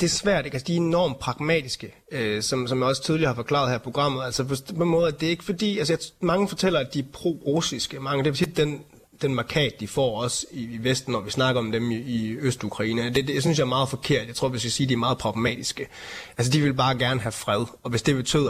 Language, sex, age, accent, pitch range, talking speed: Danish, male, 30-49, native, 110-140 Hz, 280 wpm